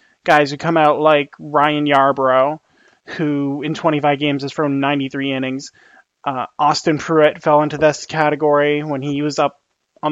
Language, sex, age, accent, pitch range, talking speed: English, male, 20-39, American, 145-165 Hz, 160 wpm